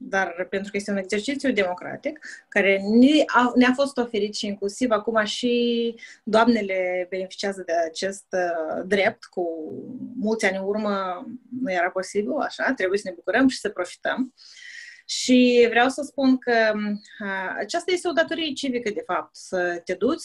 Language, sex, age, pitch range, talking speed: Romanian, female, 30-49, 200-255 Hz, 155 wpm